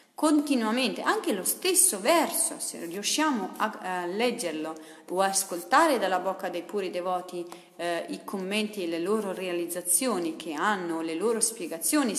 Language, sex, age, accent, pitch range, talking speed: Italian, female, 40-59, native, 185-265 Hz, 145 wpm